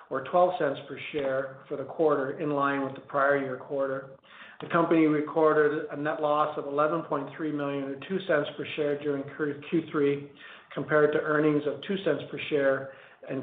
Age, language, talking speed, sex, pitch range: 50-69, English, 180 wpm, male, 135-155 Hz